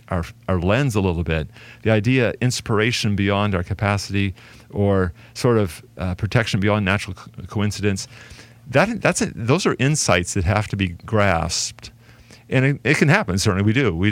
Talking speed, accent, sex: 175 wpm, American, male